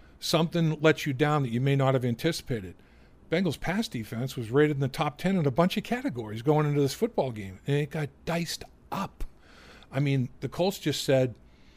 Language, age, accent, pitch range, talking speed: English, 50-69, American, 140-170 Hz, 205 wpm